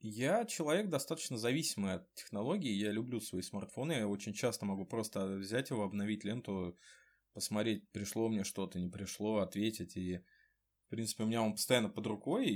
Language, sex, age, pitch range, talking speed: Ukrainian, male, 20-39, 100-135 Hz, 165 wpm